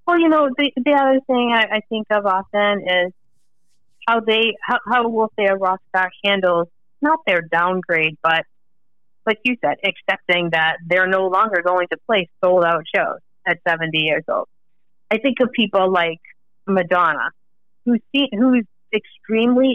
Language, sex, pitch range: English, female, 175-225 Hz